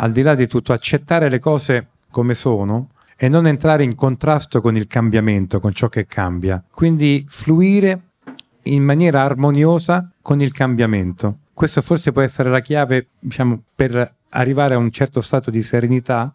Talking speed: 165 wpm